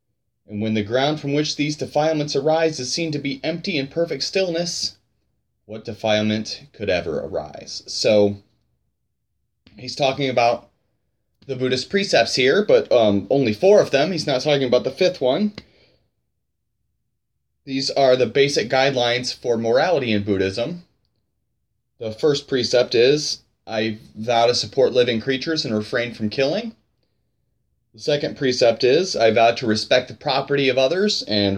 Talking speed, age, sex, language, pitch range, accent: 150 wpm, 30-49, male, English, 115-150 Hz, American